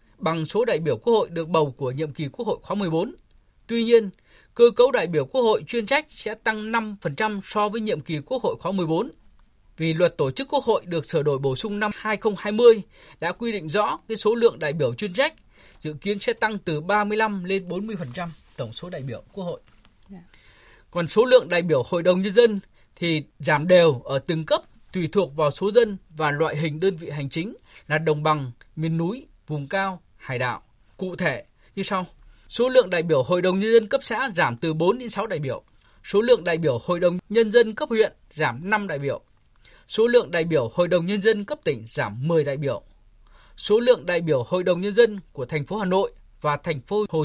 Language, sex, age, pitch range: Vietnamese, male, 20-39, 155-215 Hz